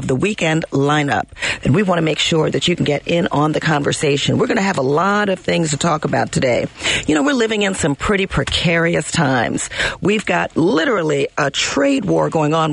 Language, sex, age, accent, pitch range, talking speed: English, female, 40-59, American, 145-200 Hz, 215 wpm